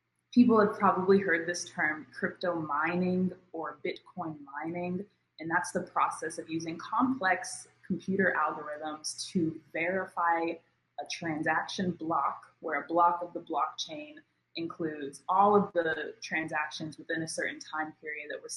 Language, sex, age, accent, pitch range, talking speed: English, female, 20-39, American, 155-195 Hz, 140 wpm